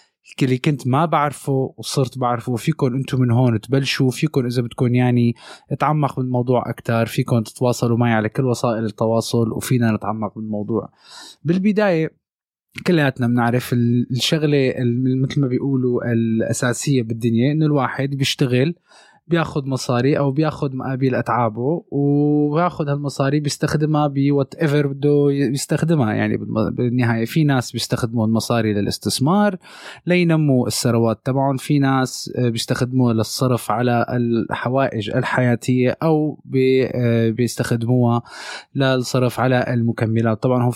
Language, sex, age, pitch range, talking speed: Arabic, male, 20-39, 115-140 Hz, 115 wpm